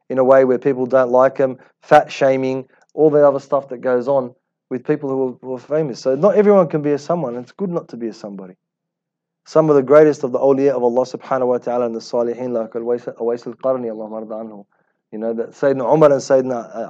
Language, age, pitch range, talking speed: English, 30-49, 130-170 Hz, 230 wpm